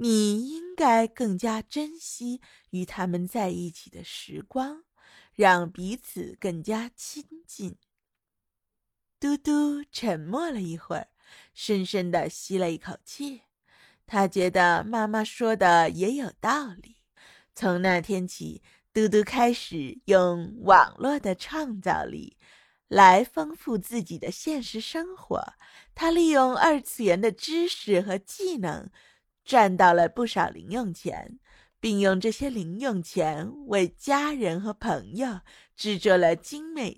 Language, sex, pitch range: Chinese, female, 185-265 Hz